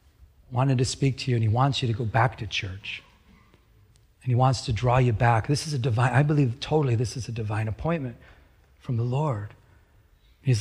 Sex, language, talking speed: male, English, 210 wpm